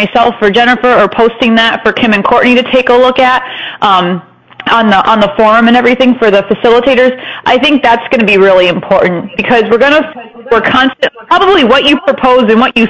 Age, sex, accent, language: 30-49, female, American, English